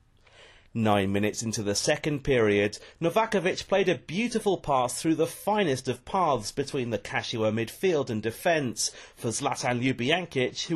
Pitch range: 115-180 Hz